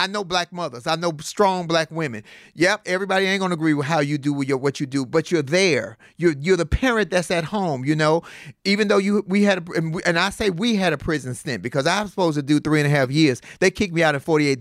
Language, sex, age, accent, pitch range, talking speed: English, male, 40-59, American, 165-230 Hz, 280 wpm